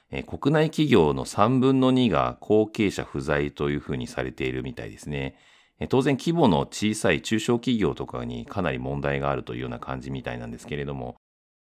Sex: male